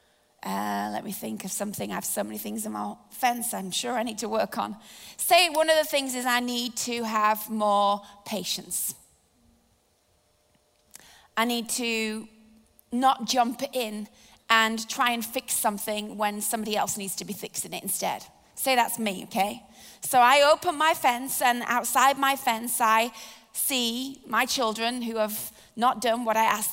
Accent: British